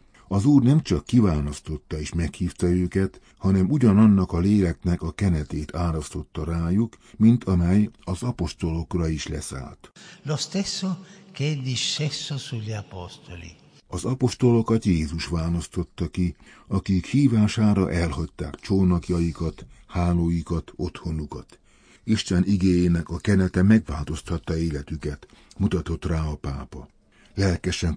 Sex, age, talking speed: male, 60-79, 95 wpm